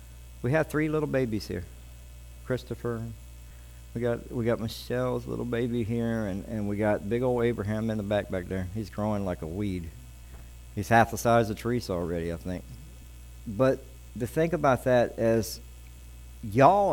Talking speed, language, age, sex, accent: 170 wpm, English, 50-69, male, American